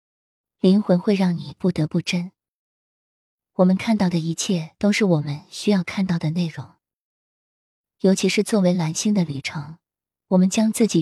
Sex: female